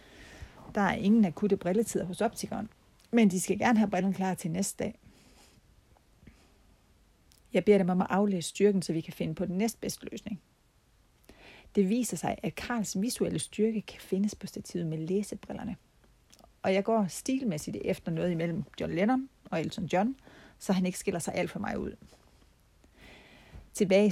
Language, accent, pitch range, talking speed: Danish, native, 170-205 Hz, 165 wpm